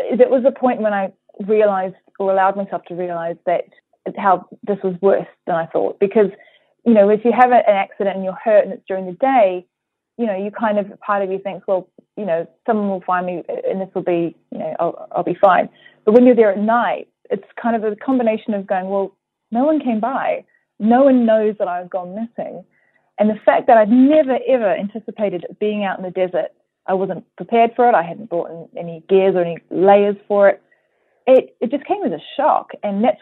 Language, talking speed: English, 225 wpm